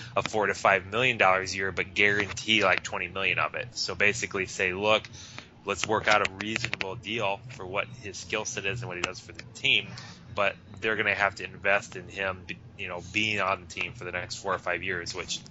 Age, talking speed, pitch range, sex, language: 20-39, 235 wpm, 95-115 Hz, male, English